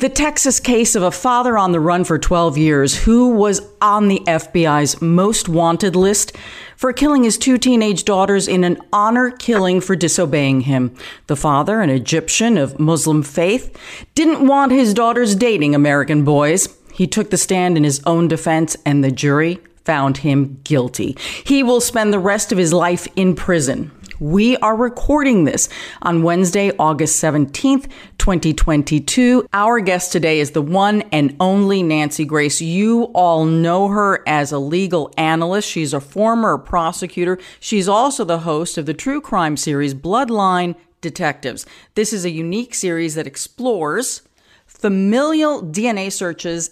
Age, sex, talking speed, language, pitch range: 40-59, female, 160 wpm, English, 155-215 Hz